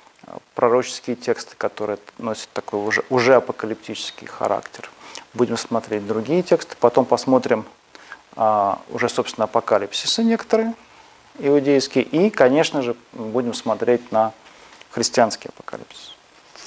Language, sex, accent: Russian, male, native